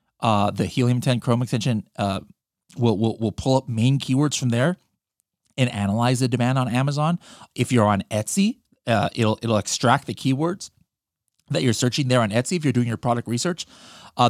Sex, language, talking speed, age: male, English, 190 wpm, 30-49